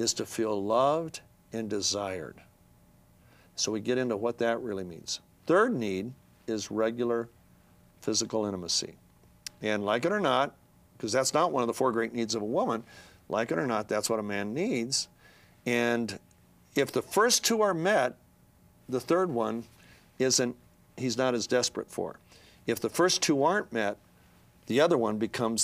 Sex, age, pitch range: male, 50-69, 105-150 Hz